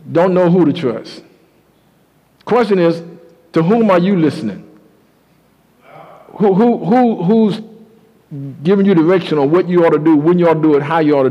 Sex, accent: male, American